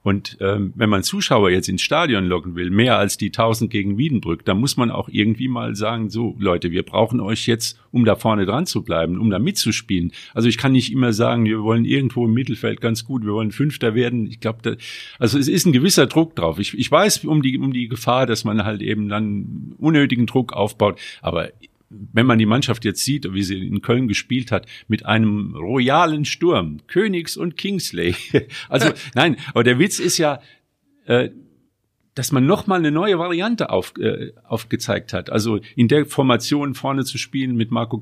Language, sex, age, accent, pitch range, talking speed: German, male, 50-69, German, 105-140 Hz, 195 wpm